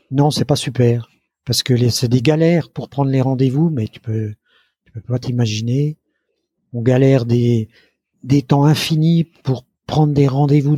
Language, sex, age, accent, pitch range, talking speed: French, male, 50-69, French, 120-145 Hz, 175 wpm